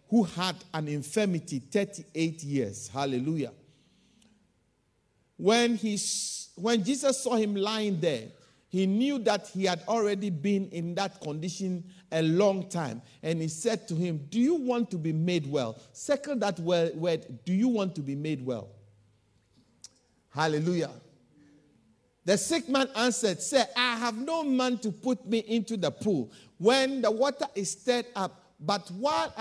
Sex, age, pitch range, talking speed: male, 50-69, 145-215 Hz, 150 wpm